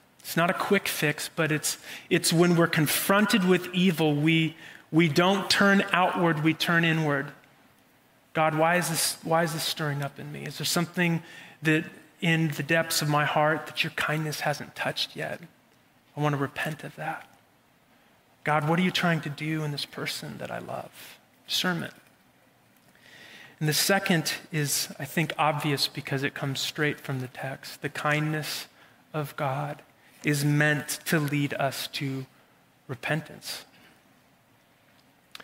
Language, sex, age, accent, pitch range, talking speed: English, male, 30-49, American, 150-180 Hz, 155 wpm